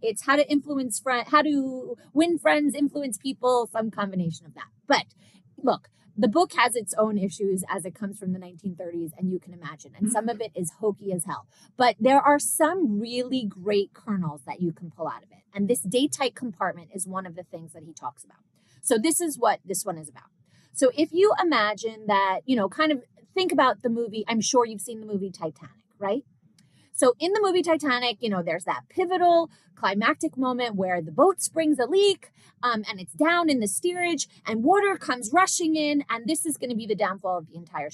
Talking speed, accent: 215 wpm, American